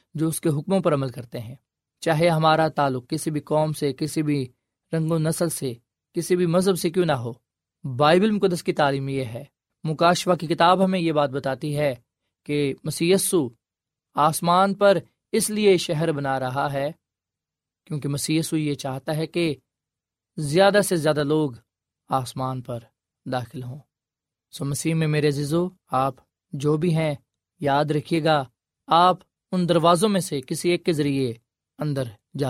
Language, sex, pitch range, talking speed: Urdu, male, 140-165 Hz, 165 wpm